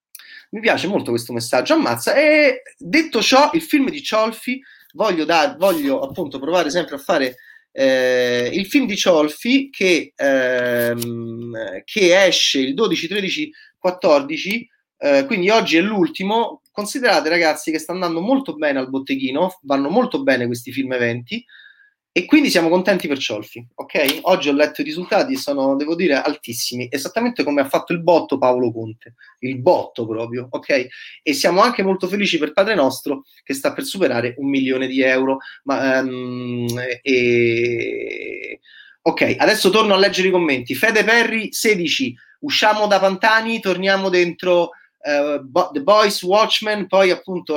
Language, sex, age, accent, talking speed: Italian, male, 30-49, native, 155 wpm